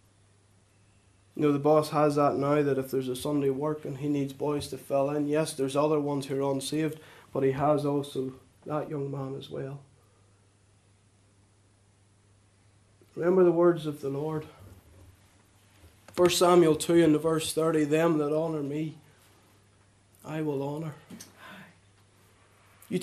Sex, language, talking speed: male, English, 145 wpm